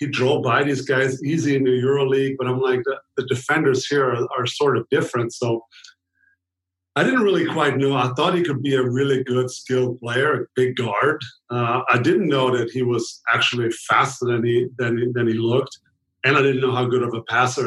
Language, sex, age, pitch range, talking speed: English, male, 40-59, 120-130 Hz, 215 wpm